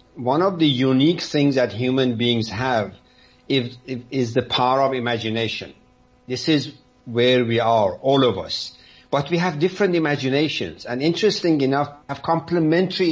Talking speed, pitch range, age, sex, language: 150 wpm, 125-155 Hz, 60-79, male, English